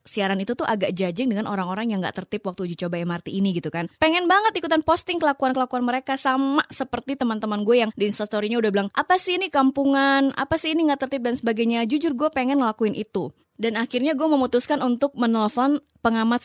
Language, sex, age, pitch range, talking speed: Indonesian, female, 20-39, 200-275 Hz, 205 wpm